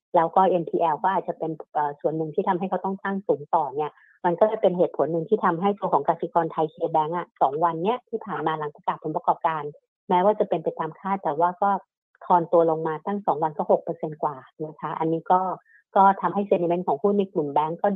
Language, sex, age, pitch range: Thai, female, 60-79, 165-205 Hz